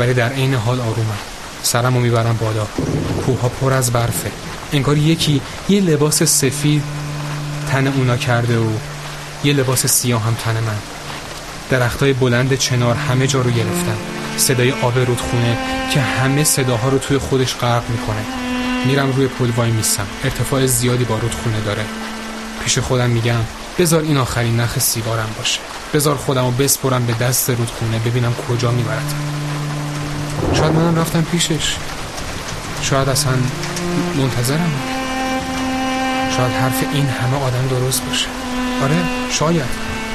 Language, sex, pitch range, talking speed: Persian, male, 120-150 Hz, 135 wpm